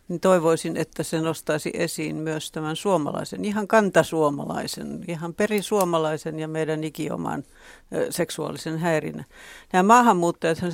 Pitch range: 155-185 Hz